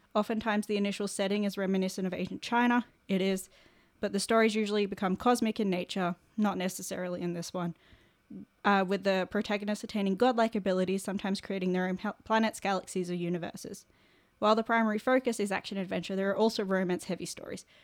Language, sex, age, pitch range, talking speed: English, female, 10-29, 180-215 Hz, 175 wpm